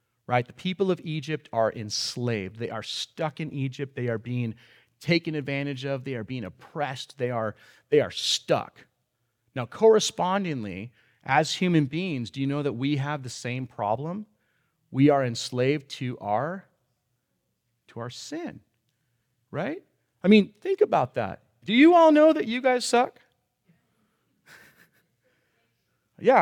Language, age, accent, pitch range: English, 30-49, American, 120-170 Hz